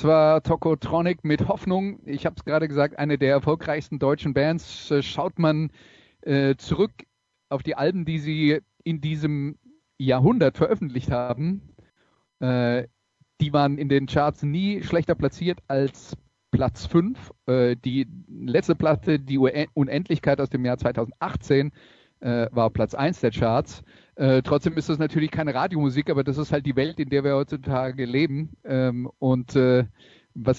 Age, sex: 40-59, male